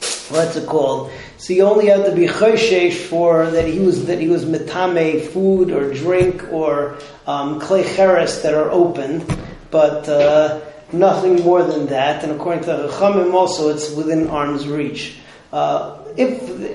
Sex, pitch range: male, 150-190 Hz